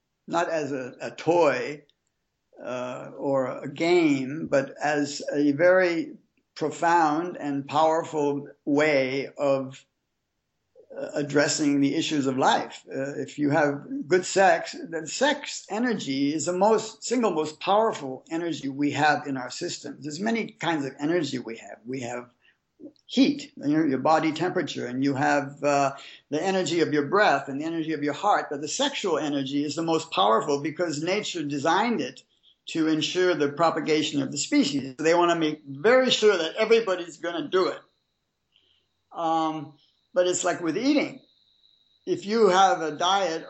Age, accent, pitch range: 60-79, American, 140-180 Hz